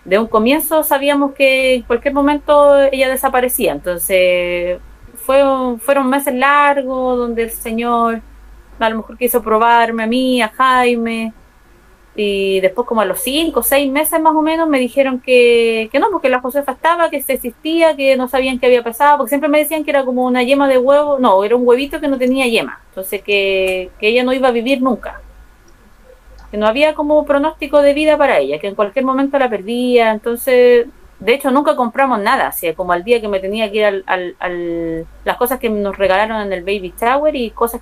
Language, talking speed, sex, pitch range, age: Spanish, 205 wpm, female, 220-275 Hz, 30-49